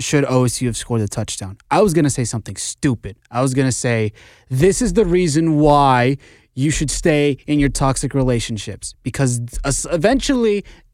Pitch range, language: 125-170 Hz, English